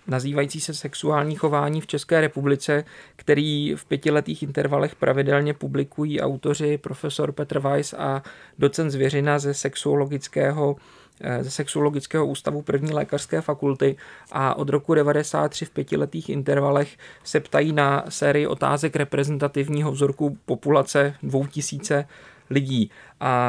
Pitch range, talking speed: 140-155 Hz, 120 wpm